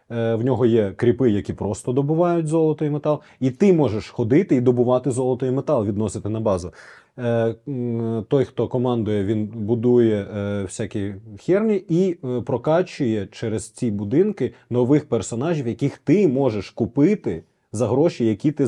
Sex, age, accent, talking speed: male, 20-39, native, 140 wpm